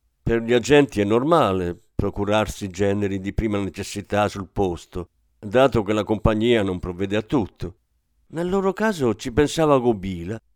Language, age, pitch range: Italian, 50-69, 90-135 Hz